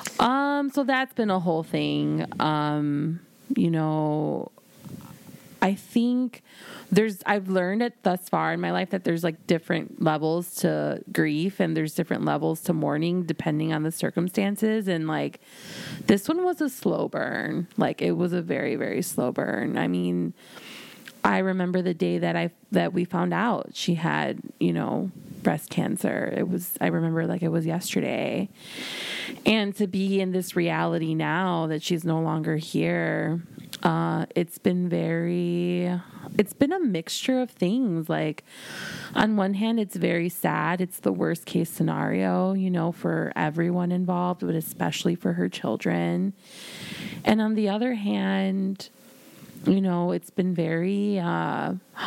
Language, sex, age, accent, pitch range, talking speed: English, female, 20-39, American, 160-205 Hz, 155 wpm